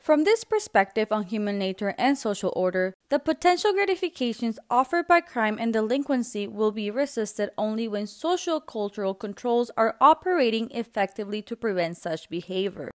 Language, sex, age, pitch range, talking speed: English, female, 20-39, 210-285 Hz, 145 wpm